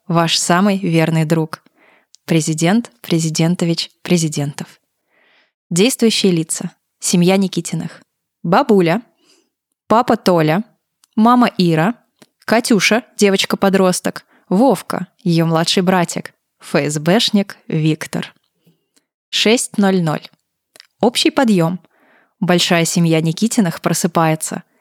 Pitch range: 170-215 Hz